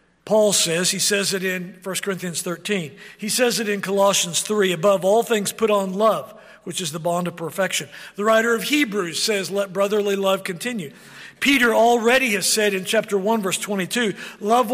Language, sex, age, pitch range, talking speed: English, male, 50-69, 180-220 Hz, 185 wpm